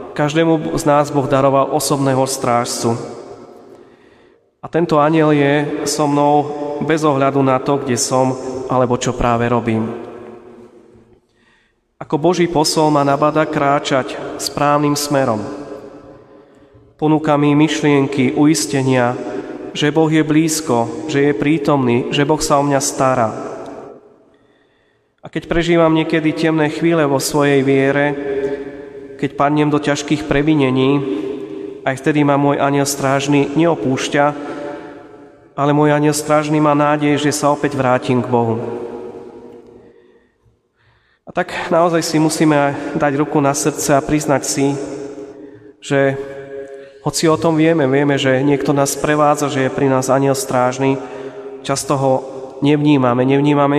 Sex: male